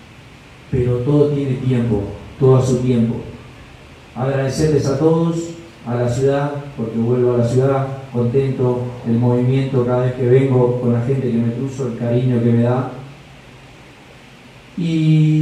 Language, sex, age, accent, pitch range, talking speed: Spanish, male, 40-59, Argentinian, 125-150 Hz, 150 wpm